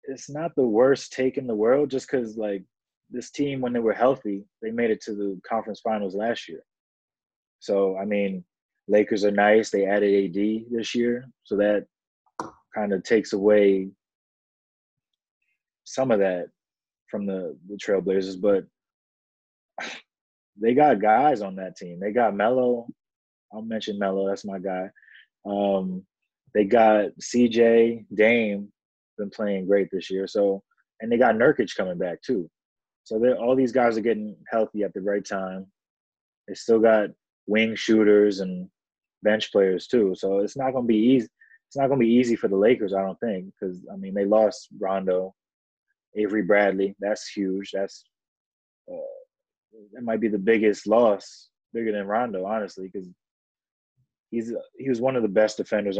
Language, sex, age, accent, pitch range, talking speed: English, male, 20-39, American, 100-115 Hz, 165 wpm